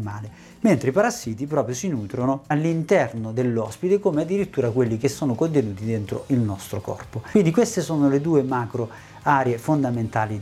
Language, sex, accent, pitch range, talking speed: Italian, male, native, 120-155 Hz, 155 wpm